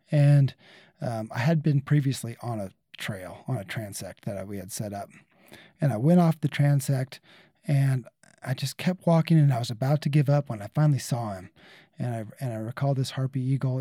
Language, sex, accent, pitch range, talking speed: English, male, American, 130-155 Hz, 210 wpm